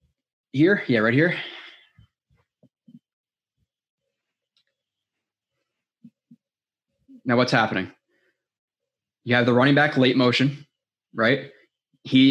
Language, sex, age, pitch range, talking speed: English, male, 20-39, 125-150 Hz, 80 wpm